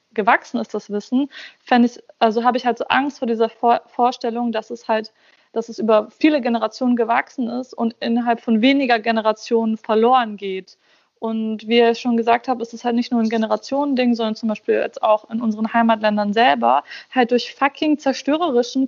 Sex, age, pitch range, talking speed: female, 20-39, 215-245 Hz, 180 wpm